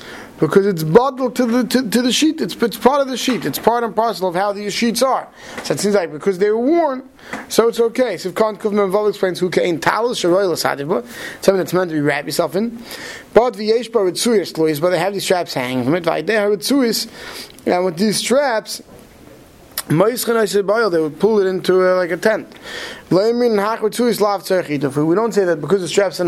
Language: English